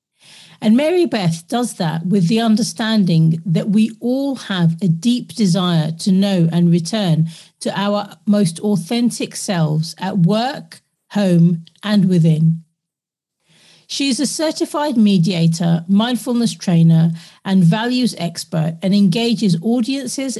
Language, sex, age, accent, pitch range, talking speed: English, female, 40-59, British, 170-205 Hz, 125 wpm